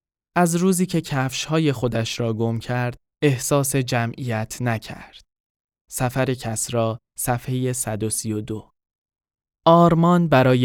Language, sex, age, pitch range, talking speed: Persian, male, 10-29, 115-145 Hz, 95 wpm